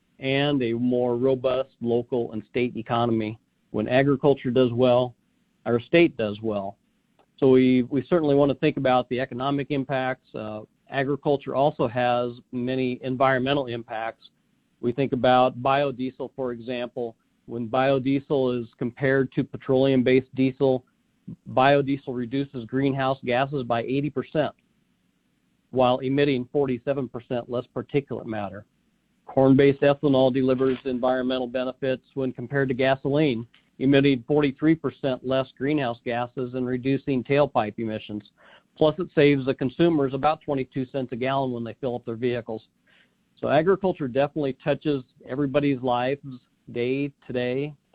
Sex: male